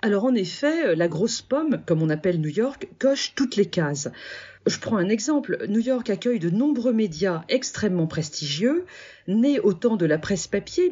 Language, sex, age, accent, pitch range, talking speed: French, female, 40-59, French, 175-240 Hz, 180 wpm